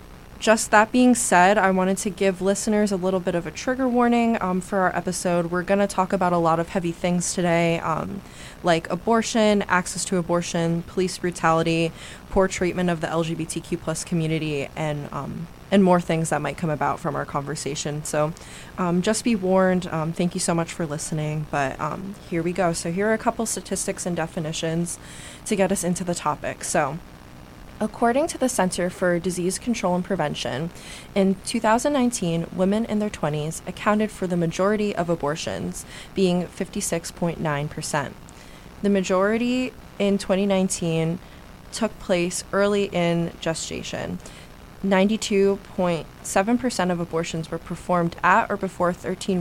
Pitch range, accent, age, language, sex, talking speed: 165-195 Hz, American, 20-39, English, female, 160 wpm